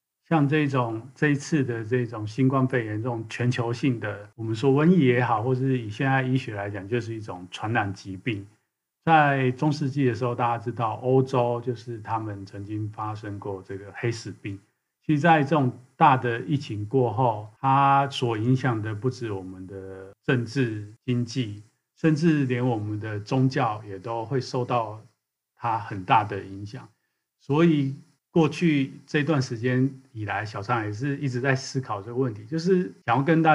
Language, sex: Chinese, male